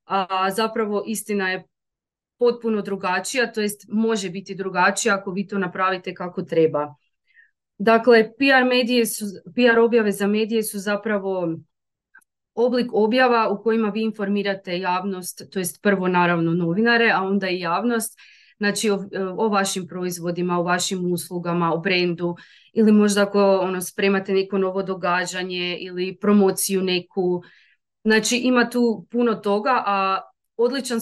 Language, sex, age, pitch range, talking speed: Croatian, female, 30-49, 185-220 Hz, 135 wpm